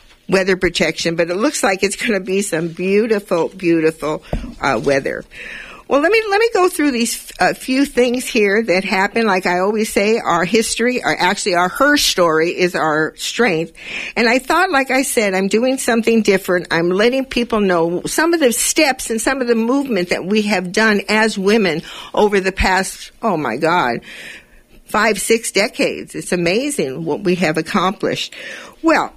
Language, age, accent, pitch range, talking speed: English, 50-69, American, 185-245 Hz, 185 wpm